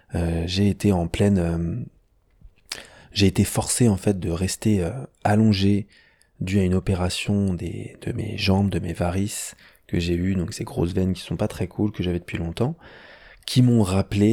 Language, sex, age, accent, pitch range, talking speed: French, male, 20-39, French, 85-100 Hz, 195 wpm